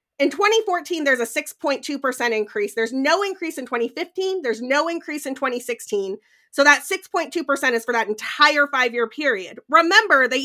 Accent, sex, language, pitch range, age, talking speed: American, female, English, 240-330 Hz, 30-49, 150 wpm